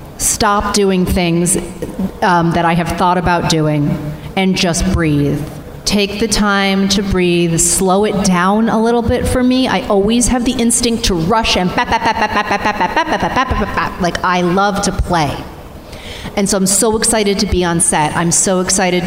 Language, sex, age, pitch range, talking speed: English, female, 30-49, 175-205 Hz, 155 wpm